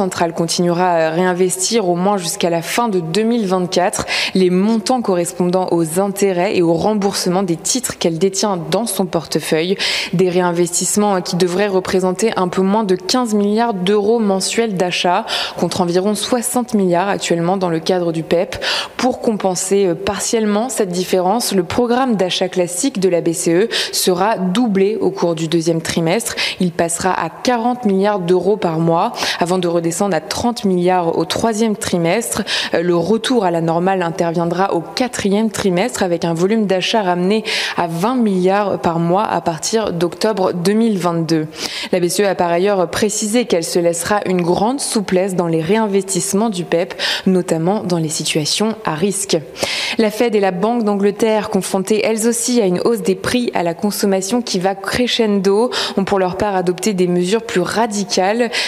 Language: French